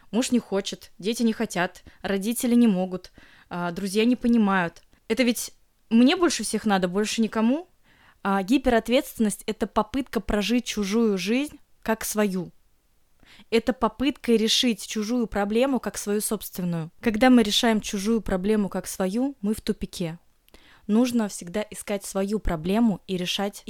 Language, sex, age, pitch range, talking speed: Russian, female, 20-39, 185-230 Hz, 135 wpm